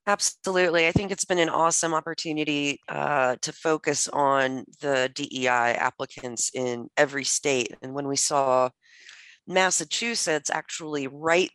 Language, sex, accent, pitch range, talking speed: English, female, American, 130-165 Hz, 130 wpm